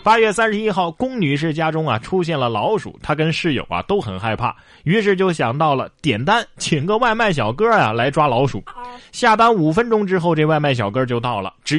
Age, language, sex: 20-39, Chinese, male